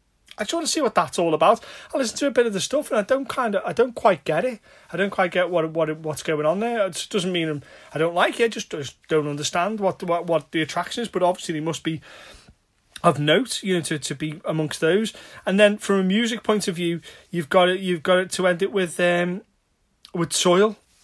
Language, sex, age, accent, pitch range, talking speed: English, male, 30-49, British, 155-205 Hz, 260 wpm